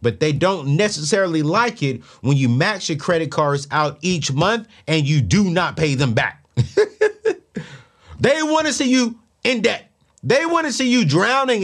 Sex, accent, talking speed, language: male, American, 180 wpm, English